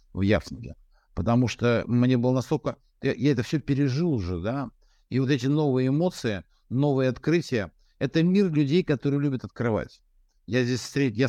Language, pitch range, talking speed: Russian, 105-135 Hz, 165 wpm